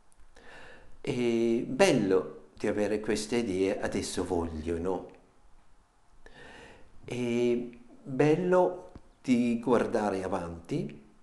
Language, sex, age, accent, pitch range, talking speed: Italian, male, 60-79, native, 100-150 Hz, 75 wpm